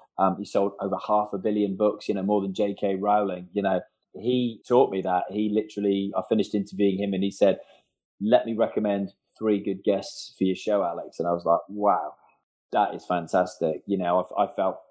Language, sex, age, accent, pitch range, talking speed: English, male, 20-39, British, 100-125 Hz, 210 wpm